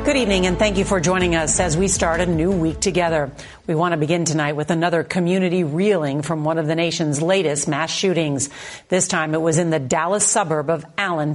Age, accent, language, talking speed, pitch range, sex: 50-69, American, English, 220 wpm, 155-190 Hz, female